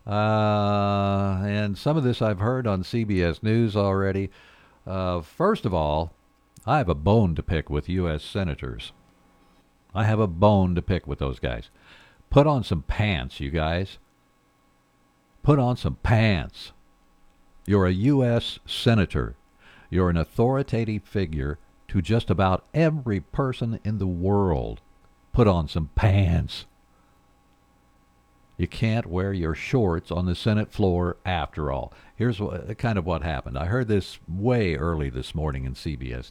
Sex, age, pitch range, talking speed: male, 60-79, 85-110 Hz, 145 wpm